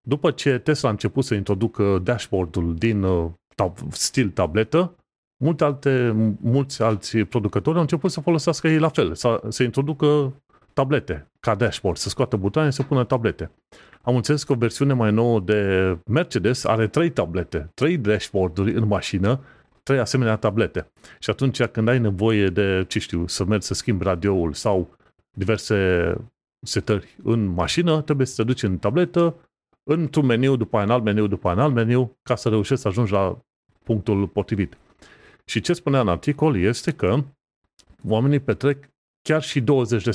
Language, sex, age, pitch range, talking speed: Romanian, male, 30-49, 105-140 Hz, 165 wpm